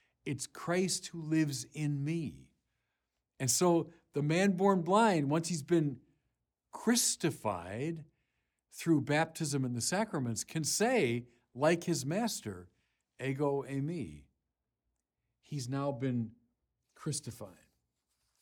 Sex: male